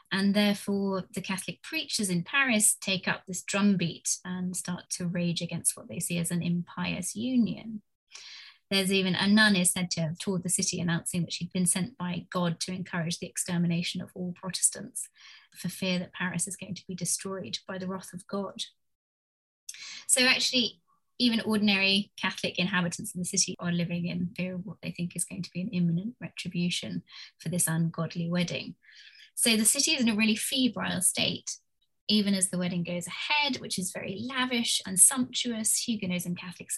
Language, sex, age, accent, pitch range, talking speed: English, female, 20-39, British, 180-215 Hz, 190 wpm